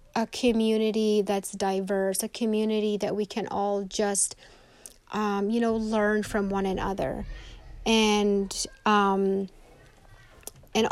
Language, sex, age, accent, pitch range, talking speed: English, female, 30-49, American, 195-220 Hz, 115 wpm